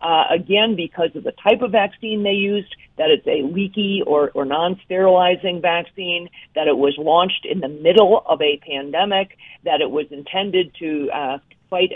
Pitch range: 150-185 Hz